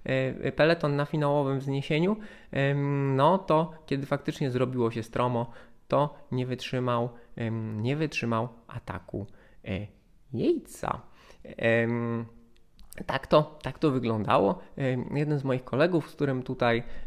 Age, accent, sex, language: 20-39, native, male, Polish